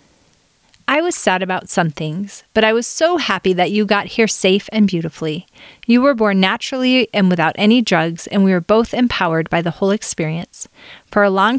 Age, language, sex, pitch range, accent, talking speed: 30-49, English, female, 180-230 Hz, American, 195 wpm